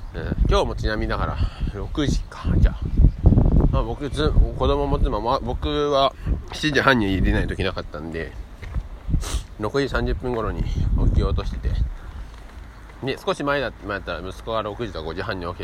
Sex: male